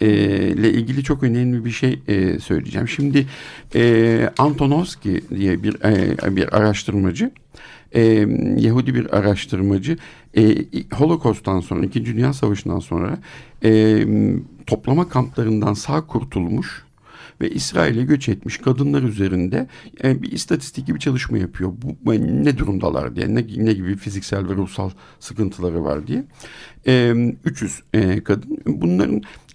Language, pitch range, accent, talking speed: Turkish, 100-140 Hz, native, 105 wpm